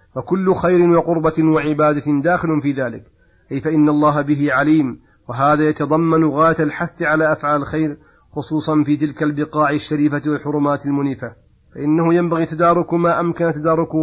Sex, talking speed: male, 135 wpm